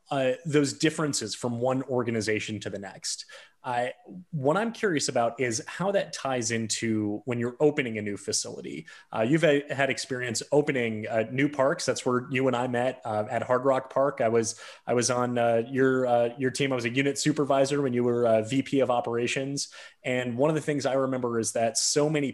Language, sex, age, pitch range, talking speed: English, male, 30-49, 115-145 Hz, 210 wpm